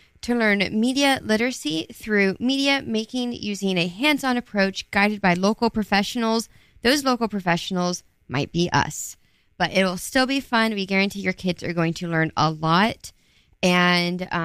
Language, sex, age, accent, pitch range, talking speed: English, female, 20-39, American, 175-230 Hz, 155 wpm